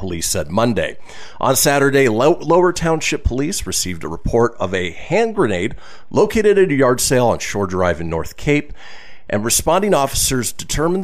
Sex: male